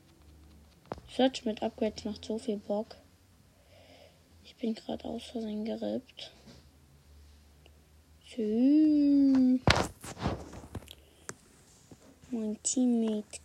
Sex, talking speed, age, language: female, 65 wpm, 20-39, English